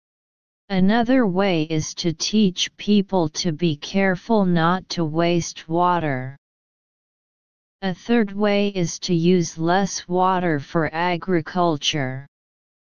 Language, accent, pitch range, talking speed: English, American, 160-195 Hz, 105 wpm